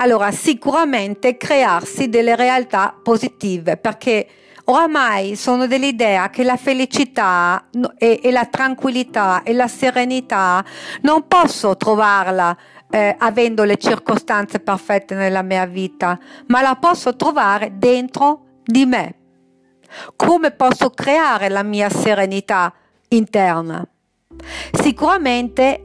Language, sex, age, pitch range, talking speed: Italian, female, 50-69, 195-250 Hz, 105 wpm